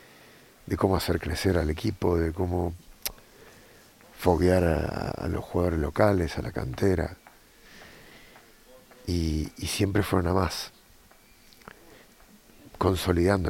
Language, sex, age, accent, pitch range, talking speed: English, male, 50-69, Argentinian, 85-100 Hz, 105 wpm